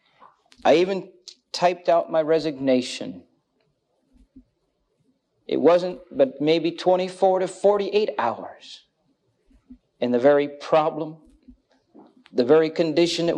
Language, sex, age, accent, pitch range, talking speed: English, male, 50-69, American, 130-180 Hz, 100 wpm